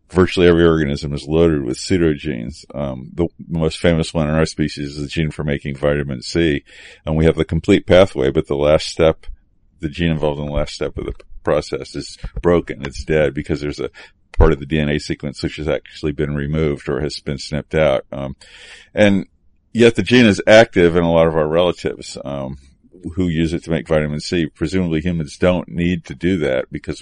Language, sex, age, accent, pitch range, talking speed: English, male, 50-69, American, 70-85 Hz, 205 wpm